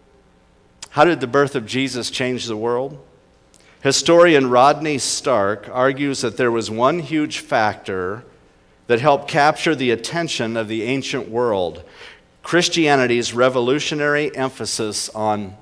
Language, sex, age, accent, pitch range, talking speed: English, male, 50-69, American, 110-150 Hz, 125 wpm